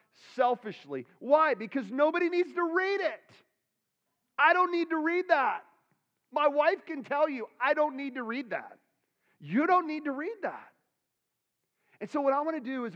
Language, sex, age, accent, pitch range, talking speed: English, male, 40-59, American, 165-260 Hz, 180 wpm